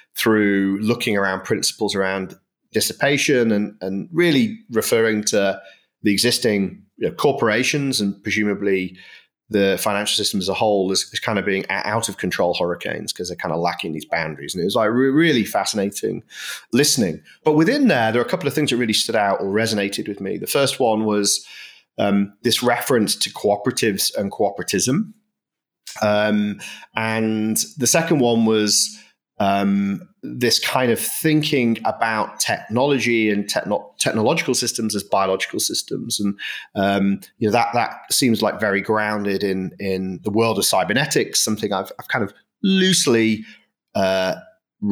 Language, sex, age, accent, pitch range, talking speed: English, male, 30-49, British, 100-120 Hz, 155 wpm